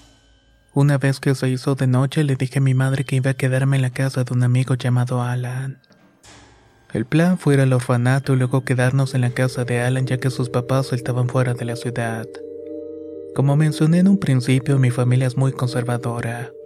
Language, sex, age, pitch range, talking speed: Spanish, male, 30-49, 120-135 Hz, 205 wpm